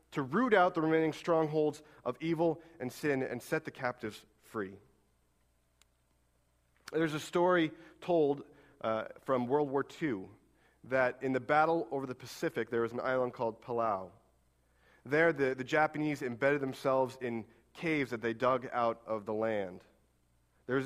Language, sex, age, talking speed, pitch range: English, male, 30-49, 150 wpm, 110-160 Hz